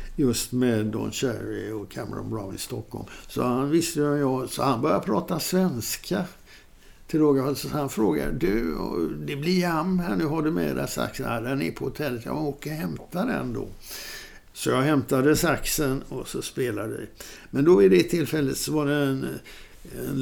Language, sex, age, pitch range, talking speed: Swedish, male, 60-79, 125-150 Hz, 185 wpm